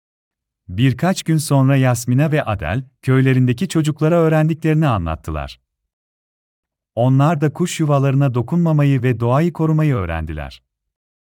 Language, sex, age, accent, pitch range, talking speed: Turkish, male, 40-59, native, 90-150 Hz, 100 wpm